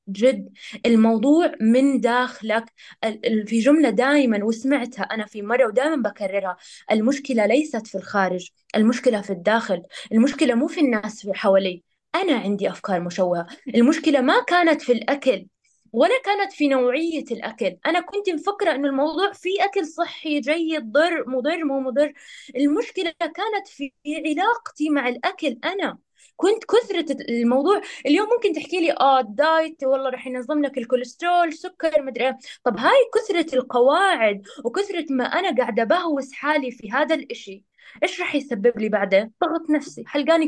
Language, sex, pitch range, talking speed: Arabic, female, 235-325 Hz, 140 wpm